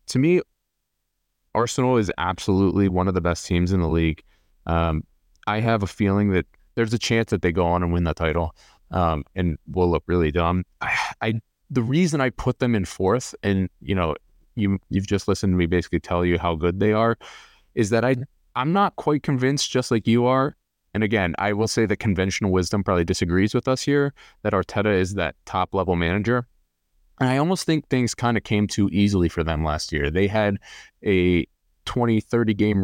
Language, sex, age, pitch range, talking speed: English, male, 20-39, 85-110 Hz, 200 wpm